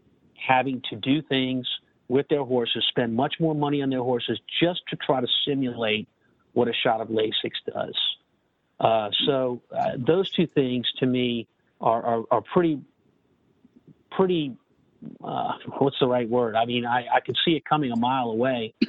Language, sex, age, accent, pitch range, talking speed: English, male, 50-69, American, 125-155 Hz, 170 wpm